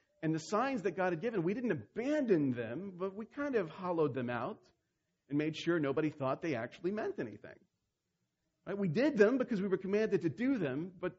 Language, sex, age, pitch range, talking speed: English, male, 40-59, 135-200 Hz, 205 wpm